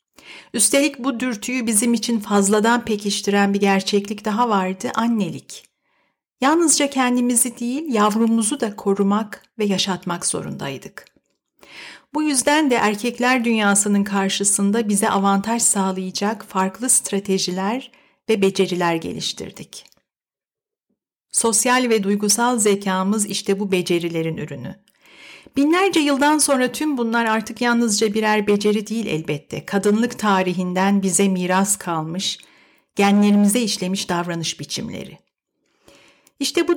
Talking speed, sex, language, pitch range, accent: 105 wpm, female, Turkish, 195-250 Hz, native